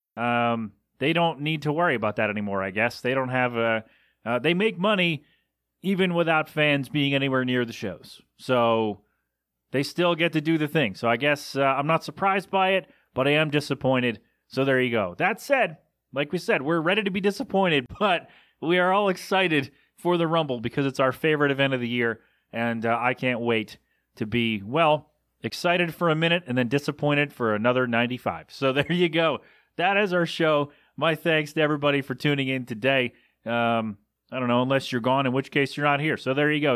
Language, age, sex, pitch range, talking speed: English, 30-49, male, 125-165 Hz, 210 wpm